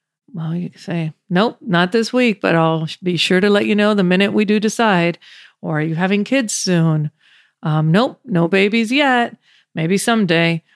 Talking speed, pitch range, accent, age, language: 185 wpm, 165-205 Hz, American, 40-59, English